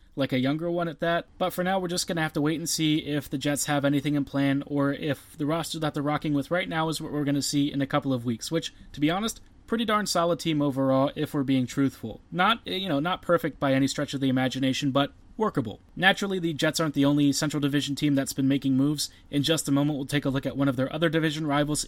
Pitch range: 140-175 Hz